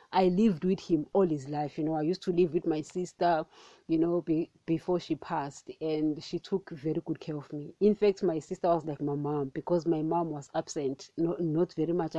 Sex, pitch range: female, 160-200 Hz